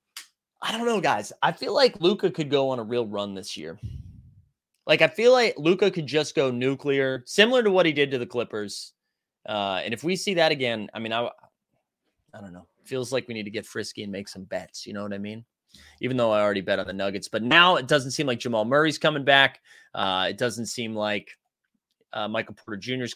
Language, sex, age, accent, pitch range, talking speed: English, male, 20-39, American, 110-170 Hz, 235 wpm